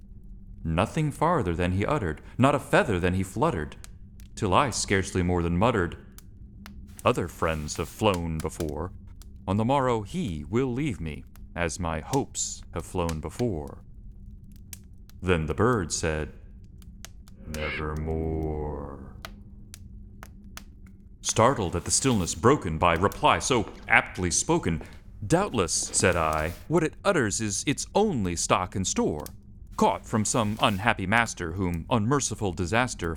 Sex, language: male, English